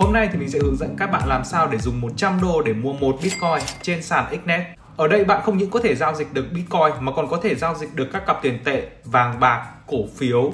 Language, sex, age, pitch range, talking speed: Vietnamese, male, 20-39, 120-180 Hz, 275 wpm